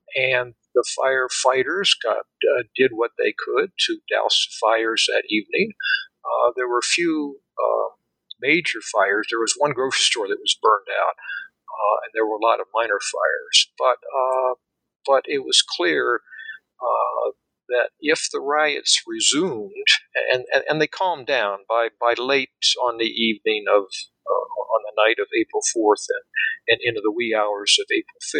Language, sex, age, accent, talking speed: English, male, 50-69, American, 170 wpm